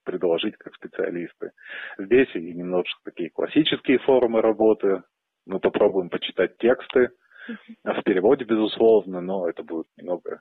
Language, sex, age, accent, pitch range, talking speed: Russian, male, 30-49, native, 100-125 Hz, 120 wpm